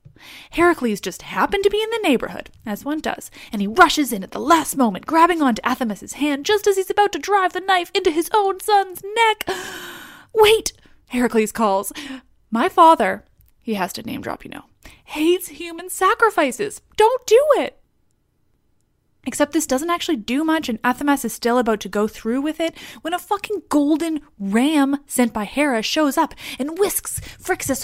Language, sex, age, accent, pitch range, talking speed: English, female, 20-39, American, 220-350 Hz, 180 wpm